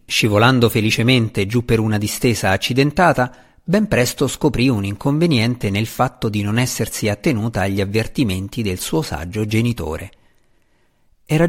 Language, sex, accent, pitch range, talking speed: Italian, male, native, 100-130 Hz, 130 wpm